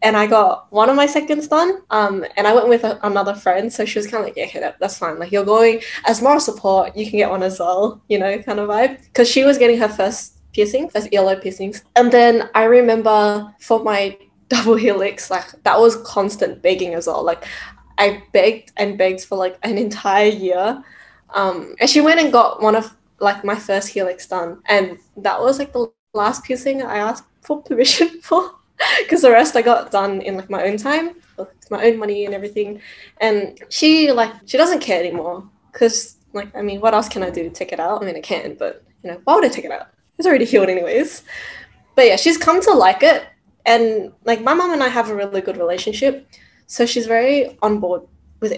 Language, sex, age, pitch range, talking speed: English, female, 10-29, 195-245 Hz, 220 wpm